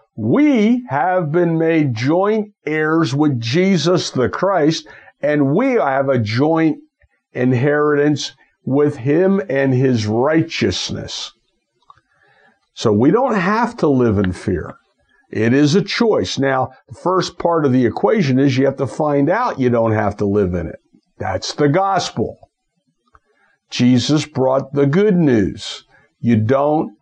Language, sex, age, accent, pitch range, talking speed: English, male, 60-79, American, 125-165 Hz, 140 wpm